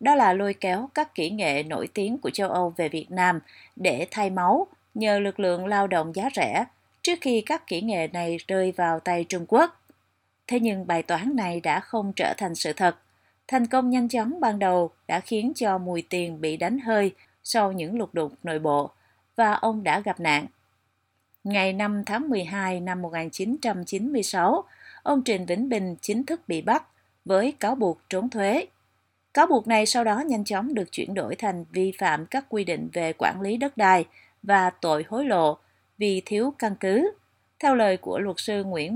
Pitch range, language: 175-230 Hz, Vietnamese